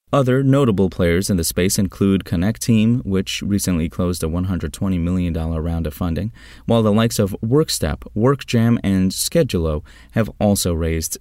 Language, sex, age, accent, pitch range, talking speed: English, male, 30-49, American, 85-120 Hz, 155 wpm